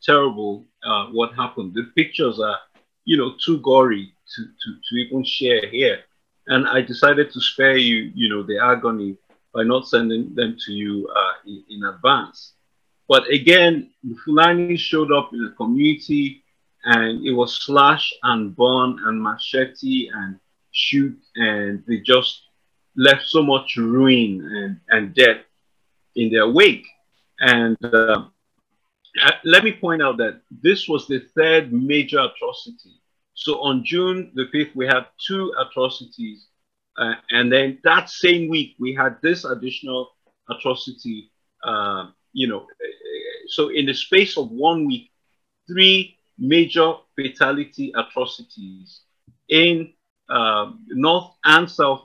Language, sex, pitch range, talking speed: English, male, 120-185 Hz, 140 wpm